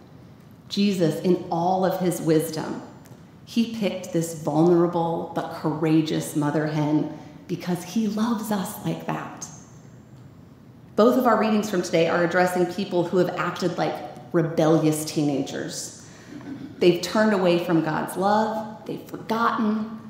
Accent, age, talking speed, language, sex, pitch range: American, 30-49, 130 wpm, English, female, 155-190 Hz